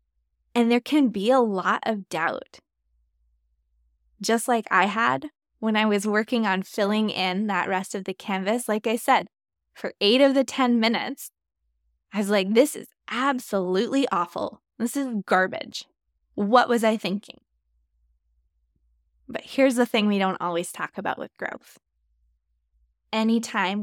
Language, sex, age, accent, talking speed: English, female, 20-39, American, 150 wpm